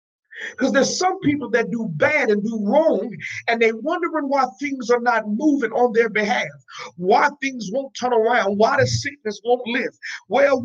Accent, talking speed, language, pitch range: American, 180 wpm, English, 215-285 Hz